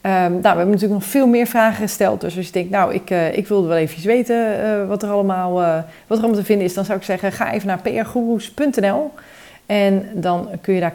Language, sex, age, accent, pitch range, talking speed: Dutch, female, 30-49, Dutch, 165-210 Hz, 250 wpm